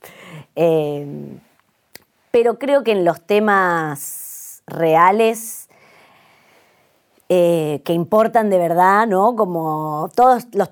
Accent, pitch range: Argentinian, 150-175 Hz